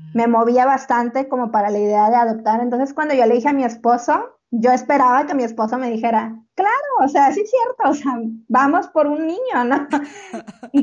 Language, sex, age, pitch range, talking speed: Spanish, female, 20-39, 230-285 Hz, 210 wpm